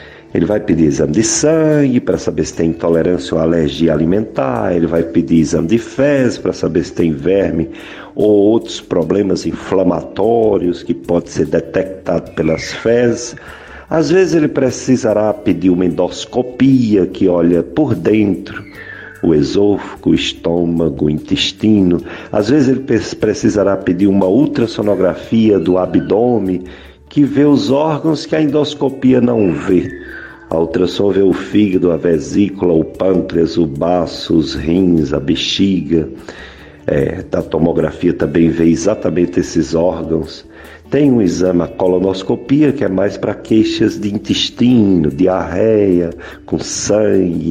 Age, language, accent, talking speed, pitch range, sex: 50-69, Portuguese, Brazilian, 135 wpm, 85-115 Hz, male